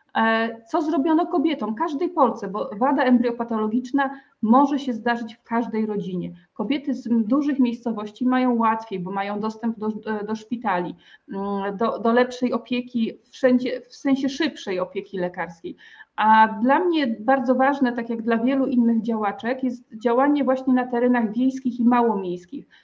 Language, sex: Polish, female